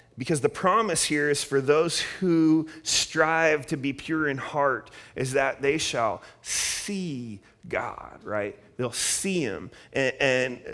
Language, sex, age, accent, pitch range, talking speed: English, male, 30-49, American, 110-145 Hz, 145 wpm